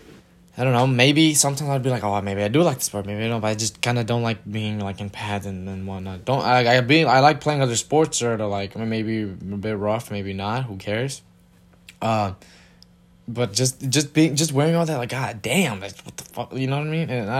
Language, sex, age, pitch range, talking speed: English, male, 10-29, 100-140 Hz, 260 wpm